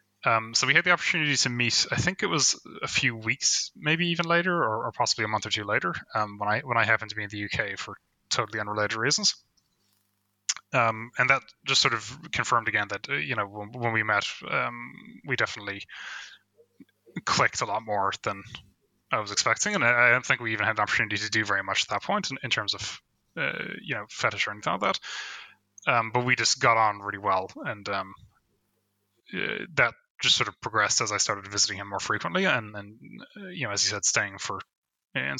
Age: 10-29